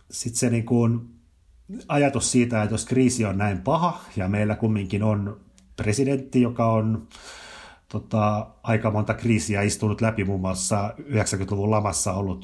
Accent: native